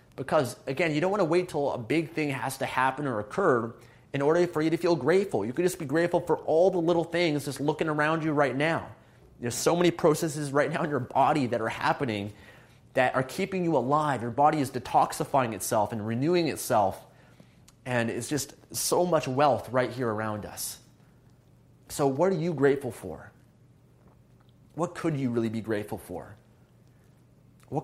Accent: American